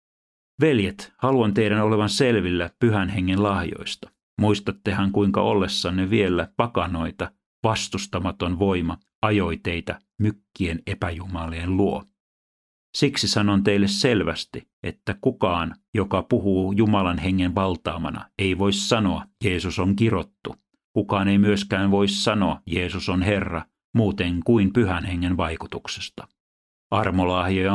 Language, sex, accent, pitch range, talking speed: Finnish, male, native, 90-105 Hz, 110 wpm